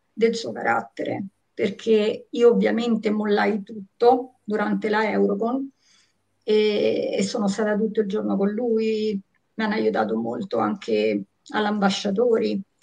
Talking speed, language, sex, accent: 120 wpm, Italian, female, native